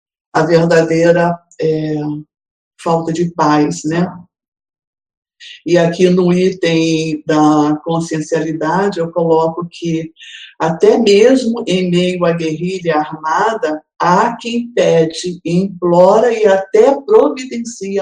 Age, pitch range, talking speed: 50-69, 165-220 Hz, 100 wpm